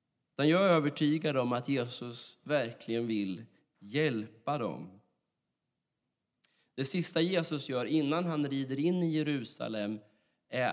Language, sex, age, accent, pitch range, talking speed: Swedish, male, 20-39, native, 110-150 Hz, 115 wpm